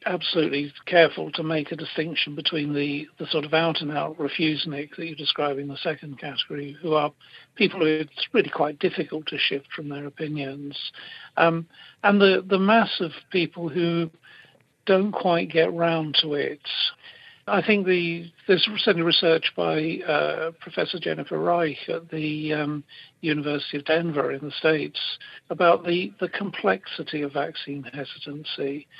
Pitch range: 145-170 Hz